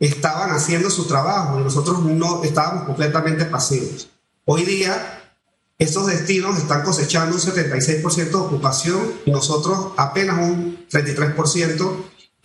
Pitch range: 150-190 Hz